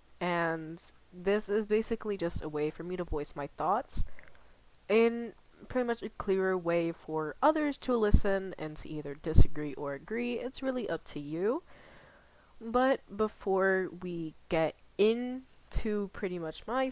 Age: 20-39